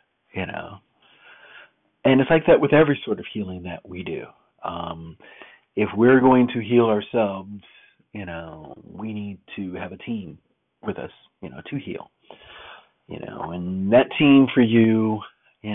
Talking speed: 165 wpm